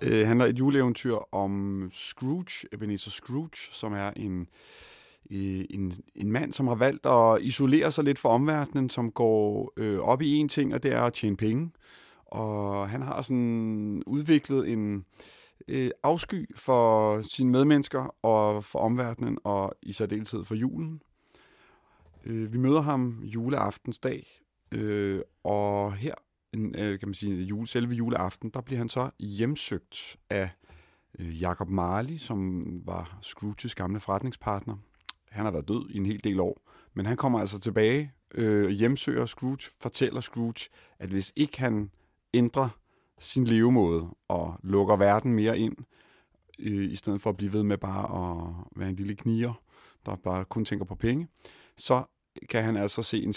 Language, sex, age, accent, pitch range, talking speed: Danish, male, 30-49, native, 100-125 Hz, 145 wpm